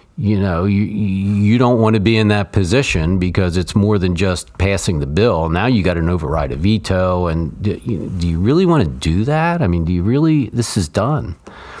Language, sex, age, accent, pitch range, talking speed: English, male, 50-69, American, 90-110 Hz, 220 wpm